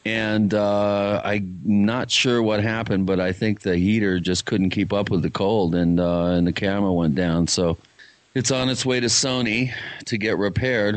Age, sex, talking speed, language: 40-59, male, 195 wpm, English